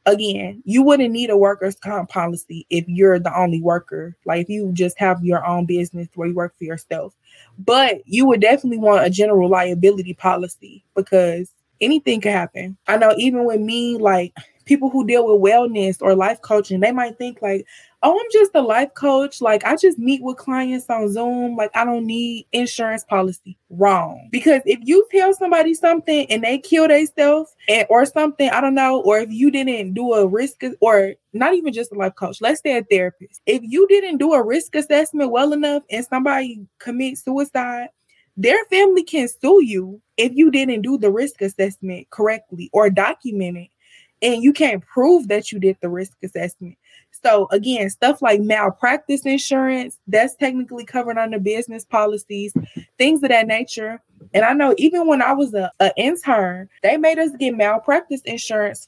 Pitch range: 195-275 Hz